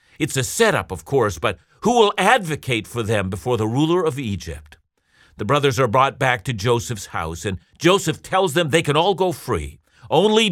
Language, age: English, 50-69